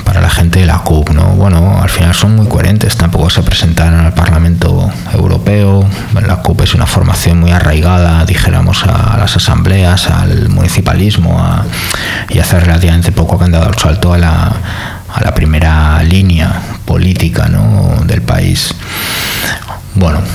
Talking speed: 160 wpm